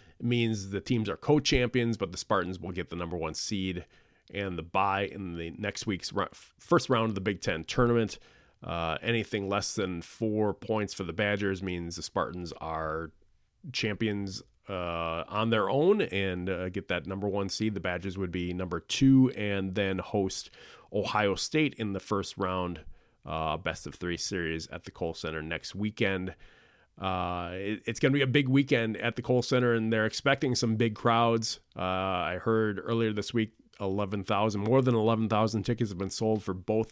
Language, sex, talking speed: English, male, 185 wpm